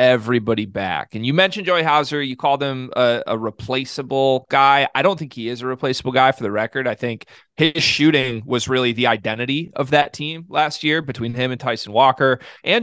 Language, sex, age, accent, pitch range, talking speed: English, male, 30-49, American, 120-155 Hz, 205 wpm